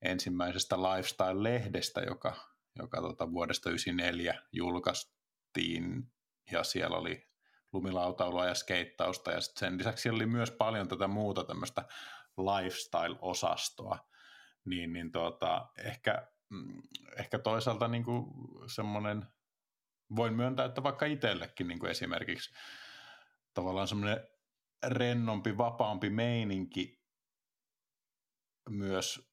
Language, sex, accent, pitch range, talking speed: Finnish, male, native, 95-115 Hz, 100 wpm